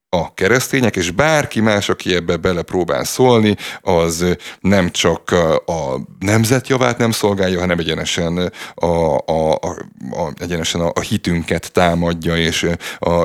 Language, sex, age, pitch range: Hungarian, male, 30-49, 85-100 Hz